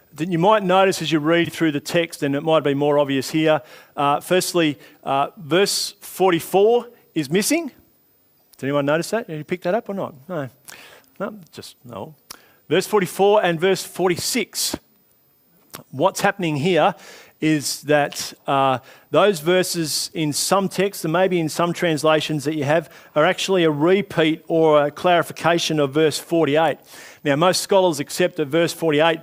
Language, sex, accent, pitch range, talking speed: English, male, Australian, 150-180 Hz, 165 wpm